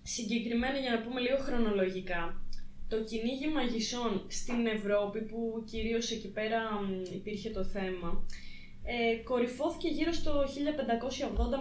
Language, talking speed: Greek, 115 wpm